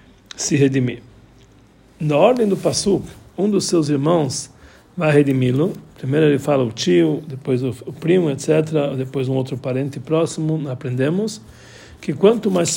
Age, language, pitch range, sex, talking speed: 60-79, Portuguese, 130-175 Hz, male, 145 wpm